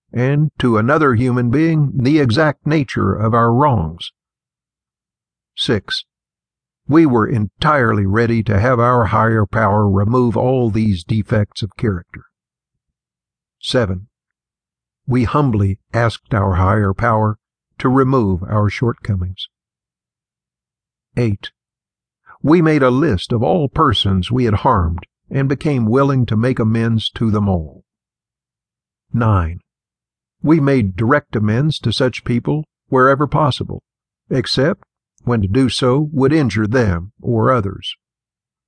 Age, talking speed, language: 60-79, 120 wpm, English